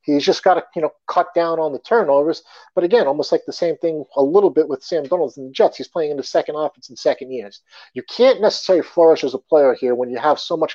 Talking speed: 275 wpm